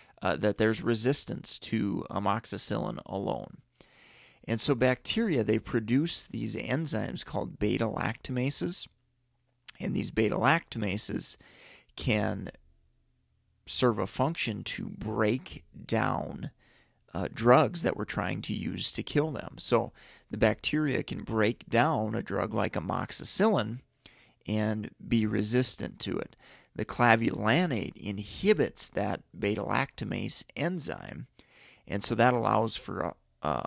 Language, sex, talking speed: English, male, 110 wpm